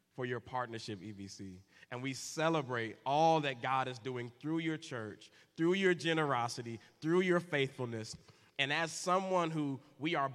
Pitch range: 115-155 Hz